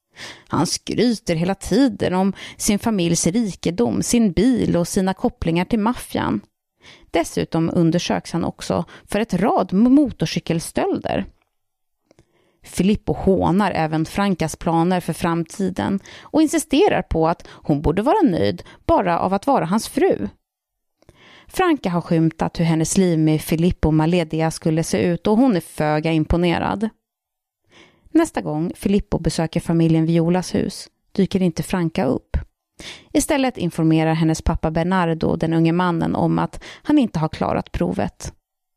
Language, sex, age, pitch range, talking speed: Swedish, female, 30-49, 165-225 Hz, 135 wpm